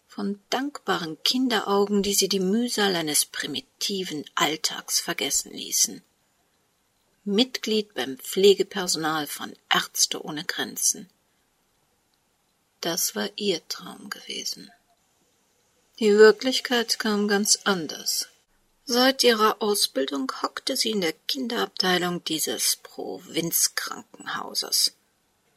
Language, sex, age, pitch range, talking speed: German, female, 50-69, 185-225 Hz, 90 wpm